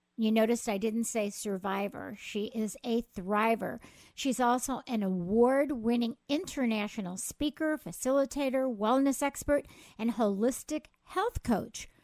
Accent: American